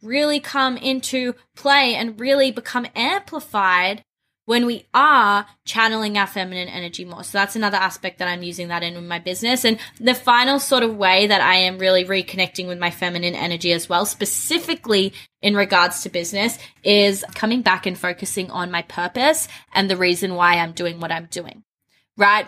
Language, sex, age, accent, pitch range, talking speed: English, female, 20-39, Australian, 180-230 Hz, 180 wpm